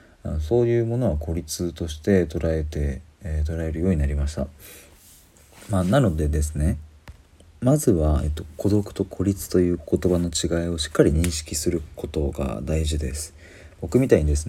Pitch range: 80-95 Hz